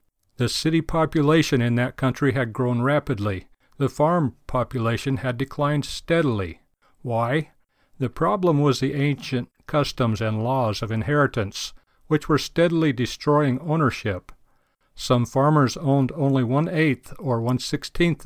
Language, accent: English, American